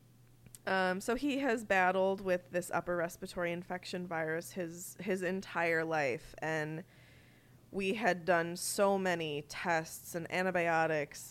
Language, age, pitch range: English, 20-39, 145-185 Hz